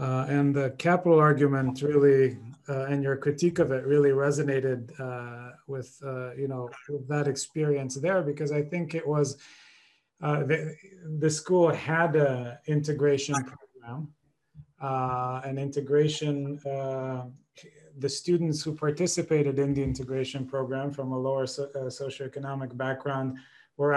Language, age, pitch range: English, 30-49, 135-150 Hz